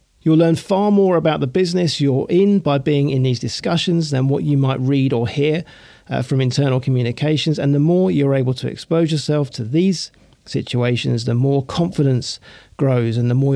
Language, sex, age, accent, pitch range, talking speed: English, male, 40-59, British, 130-170 Hz, 190 wpm